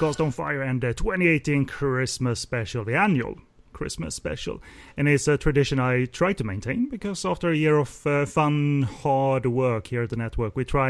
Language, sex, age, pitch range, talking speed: English, male, 30-49, 115-145 Hz, 185 wpm